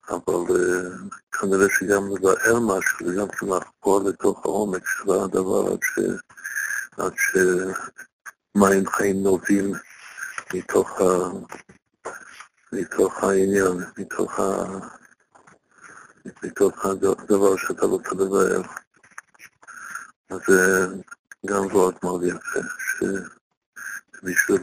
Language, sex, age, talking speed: Hebrew, male, 60-79, 90 wpm